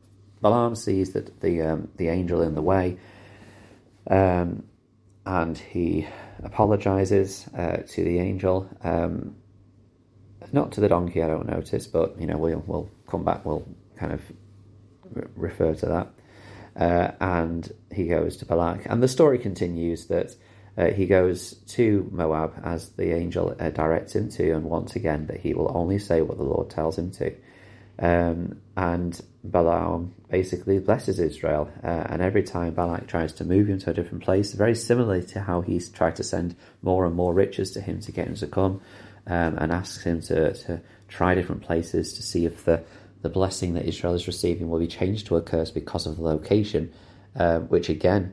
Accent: British